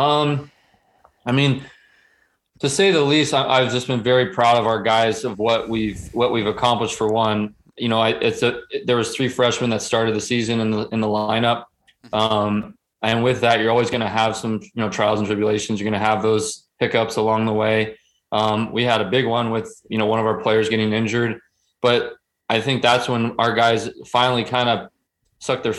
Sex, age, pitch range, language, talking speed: male, 20-39, 110-120 Hz, English, 220 wpm